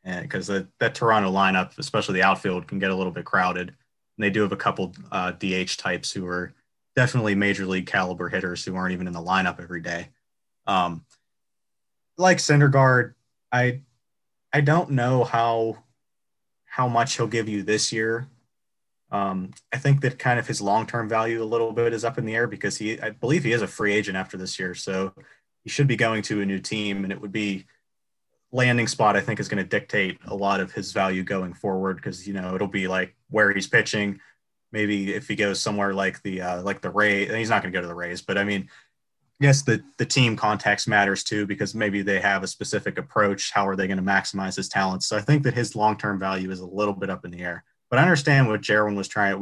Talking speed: 225 wpm